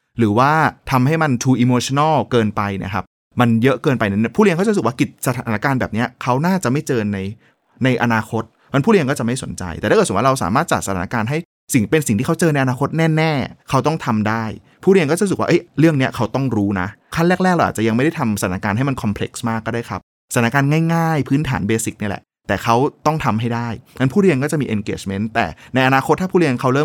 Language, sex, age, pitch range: Thai, male, 20-39, 110-140 Hz